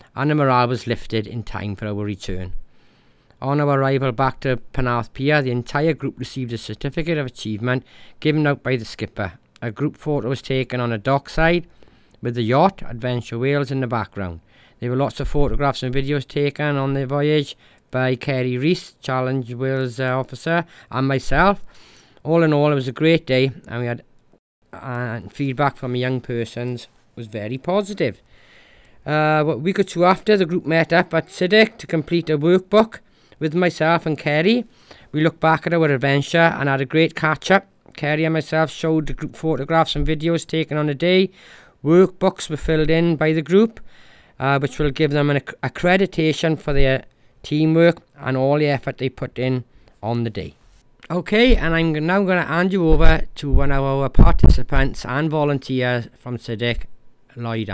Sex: male